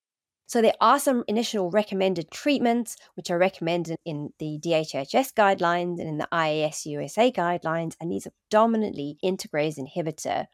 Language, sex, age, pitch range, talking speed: English, female, 30-49, 155-215 Hz, 150 wpm